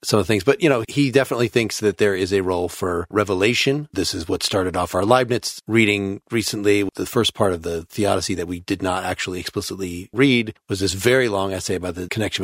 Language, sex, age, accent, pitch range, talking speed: English, male, 40-59, American, 105-130 Hz, 225 wpm